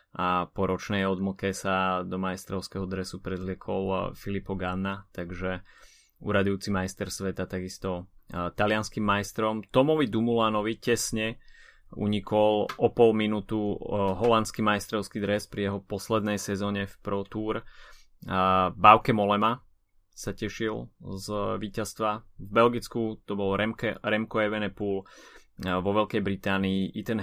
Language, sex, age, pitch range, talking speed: Slovak, male, 20-39, 95-105 Hz, 125 wpm